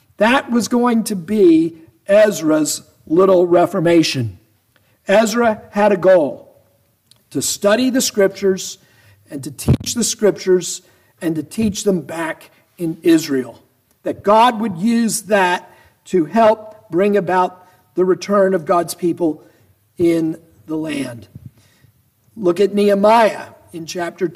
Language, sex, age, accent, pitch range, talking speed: English, male, 50-69, American, 155-215 Hz, 125 wpm